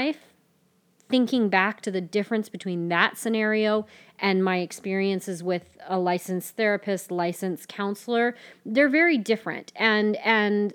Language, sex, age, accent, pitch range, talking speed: English, female, 30-49, American, 175-220 Hz, 125 wpm